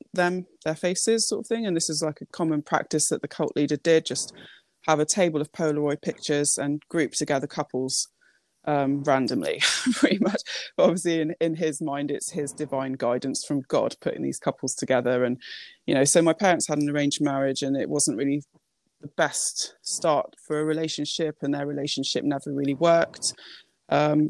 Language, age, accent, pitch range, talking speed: English, 20-39, British, 145-170 Hz, 185 wpm